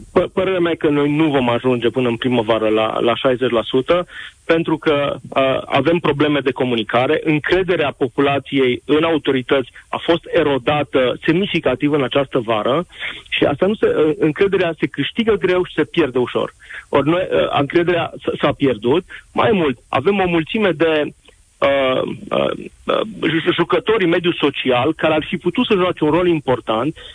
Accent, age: native, 40-59